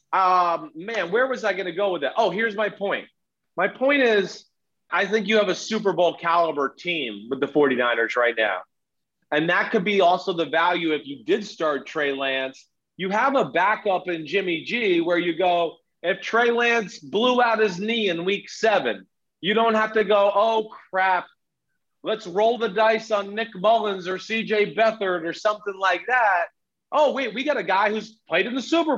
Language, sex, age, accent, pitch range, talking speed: English, male, 30-49, American, 180-225 Hz, 200 wpm